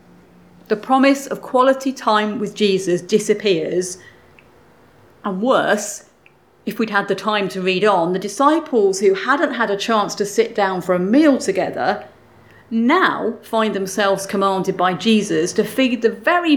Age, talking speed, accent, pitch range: 40-59, 150 wpm, British, 180-230 Hz